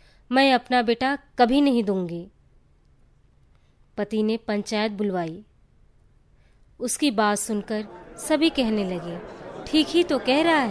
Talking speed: 120 wpm